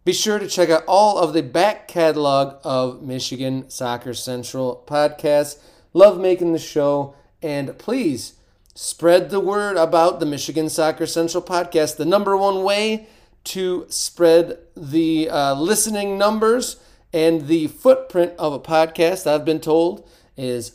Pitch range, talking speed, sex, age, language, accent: 145-185 Hz, 145 wpm, male, 30-49, English, American